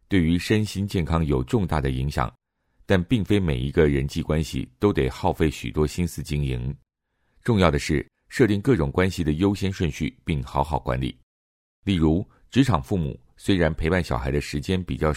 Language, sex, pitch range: Chinese, male, 70-100 Hz